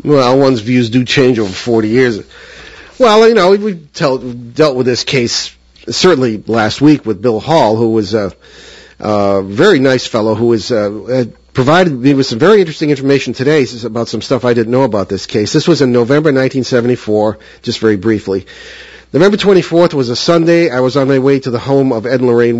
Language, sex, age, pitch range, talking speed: English, male, 40-59, 110-140 Hz, 200 wpm